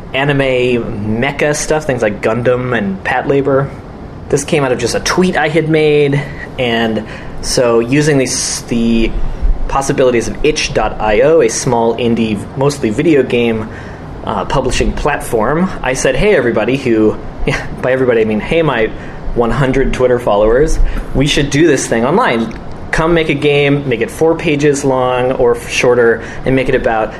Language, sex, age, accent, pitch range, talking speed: English, male, 20-39, American, 115-145 Hz, 155 wpm